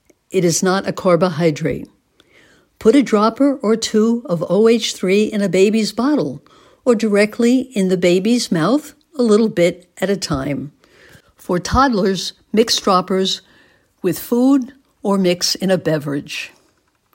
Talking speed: 135 wpm